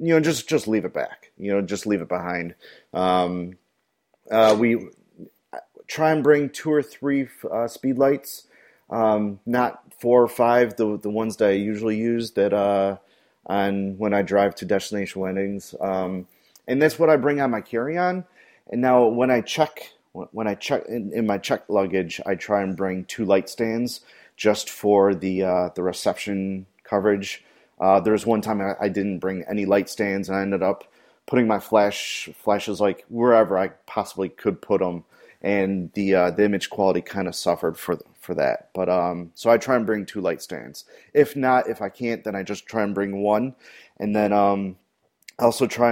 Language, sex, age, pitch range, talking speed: English, male, 30-49, 95-115 Hz, 195 wpm